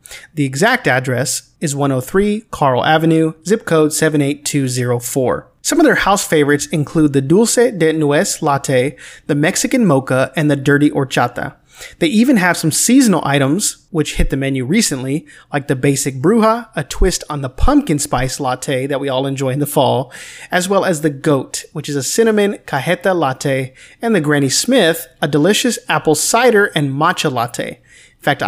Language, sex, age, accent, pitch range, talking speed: English, male, 30-49, American, 140-185 Hz, 170 wpm